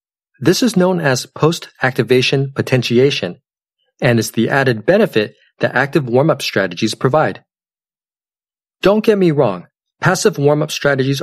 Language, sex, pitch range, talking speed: English, male, 115-160 Hz, 125 wpm